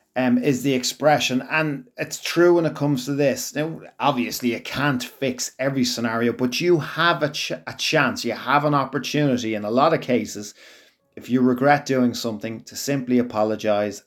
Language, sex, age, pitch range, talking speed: English, male, 30-49, 115-140 Hz, 185 wpm